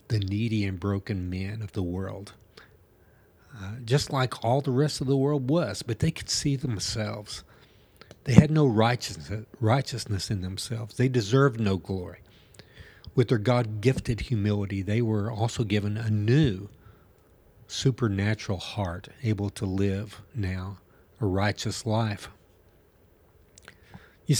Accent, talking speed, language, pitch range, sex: American, 130 wpm, English, 95-120 Hz, male